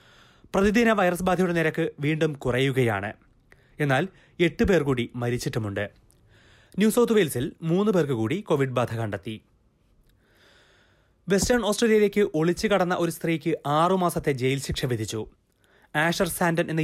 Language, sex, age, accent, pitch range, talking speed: Malayalam, male, 30-49, native, 130-180 Hz, 120 wpm